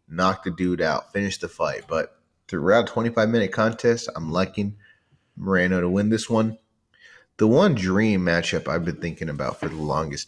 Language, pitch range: English, 95-125 Hz